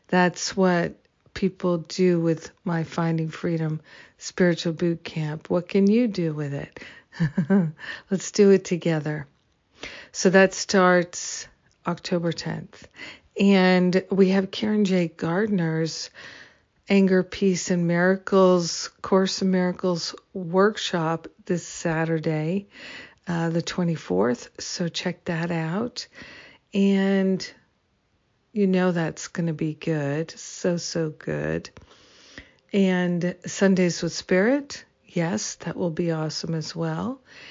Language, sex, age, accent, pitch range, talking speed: English, female, 50-69, American, 165-190 Hz, 115 wpm